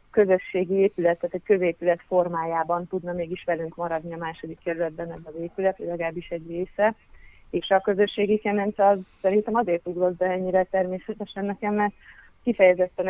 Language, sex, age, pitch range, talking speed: Hungarian, female, 30-49, 170-200 Hz, 150 wpm